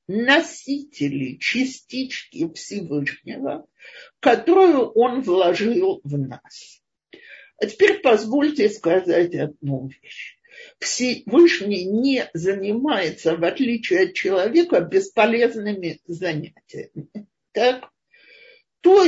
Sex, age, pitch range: male, 50-69, 200-330 Hz